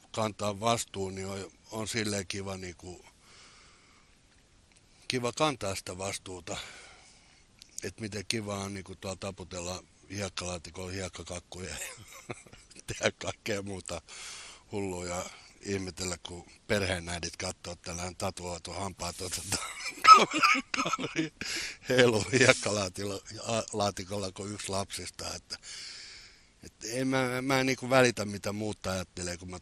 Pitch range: 85-105 Hz